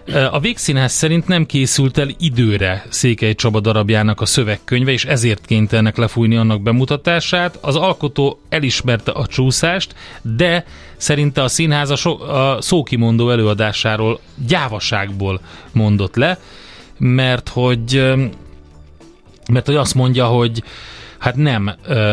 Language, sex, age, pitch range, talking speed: Hungarian, male, 30-49, 105-125 Hz, 115 wpm